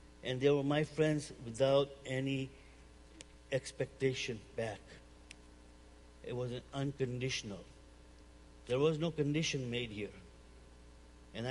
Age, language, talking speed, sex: 60-79, English, 105 wpm, male